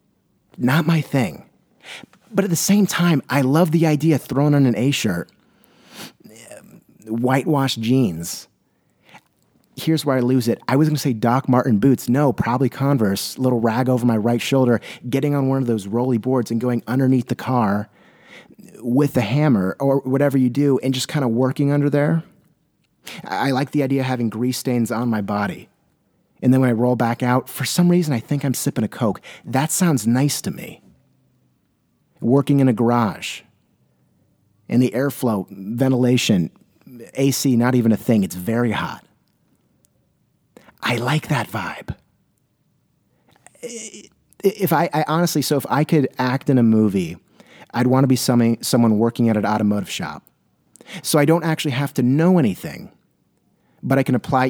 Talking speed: 165 wpm